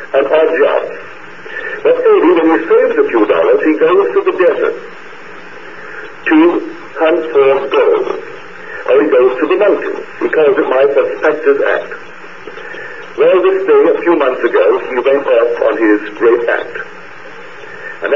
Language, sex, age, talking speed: English, male, 60-79, 155 wpm